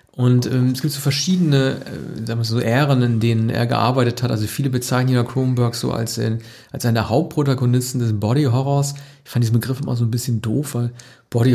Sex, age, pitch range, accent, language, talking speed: male, 40-59, 115-135 Hz, German, German, 215 wpm